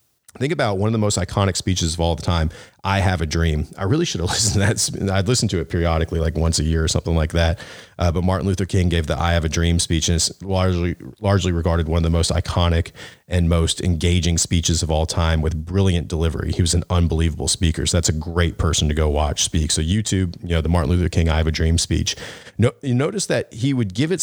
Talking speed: 255 wpm